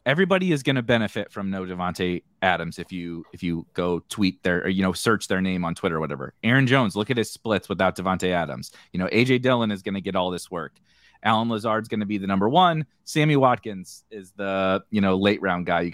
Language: English